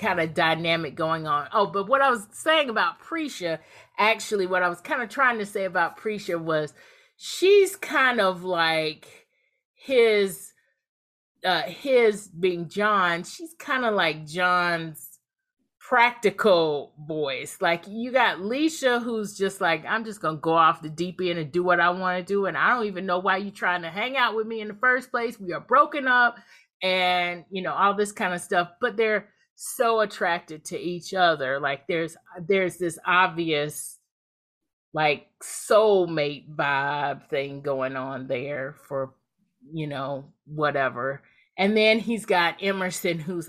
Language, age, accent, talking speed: English, 30-49, American, 165 wpm